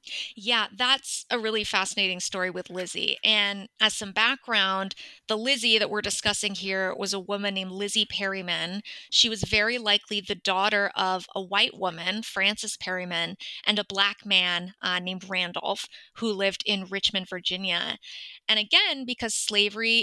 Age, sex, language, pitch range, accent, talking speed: 20-39, female, English, 195-230 Hz, American, 155 wpm